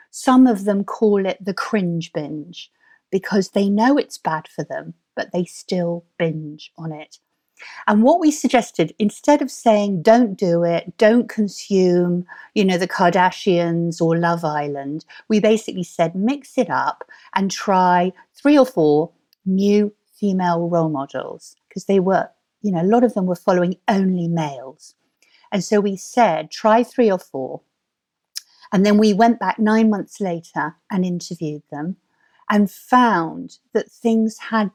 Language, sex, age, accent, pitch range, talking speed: English, female, 50-69, British, 175-225 Hz, 160 wpm